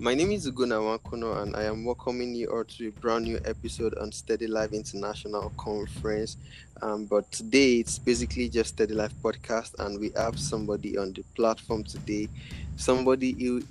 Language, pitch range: English, 100-115 Hz